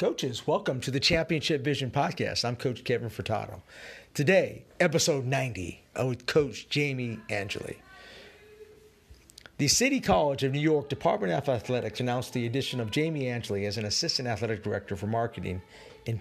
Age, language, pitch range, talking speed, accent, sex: 50-69, English, 110-150 Hz, 150 wpm, American, male